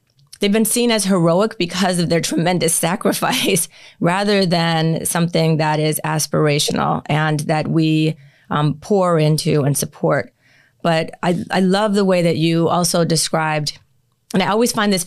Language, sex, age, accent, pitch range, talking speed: English, female, 30-49, American, 160-185 Hz, 155 wpm